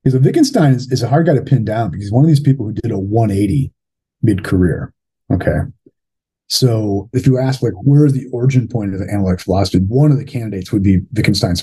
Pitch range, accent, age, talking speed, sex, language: 100-135 Hz, American, 30-49, 215 wpm, male, English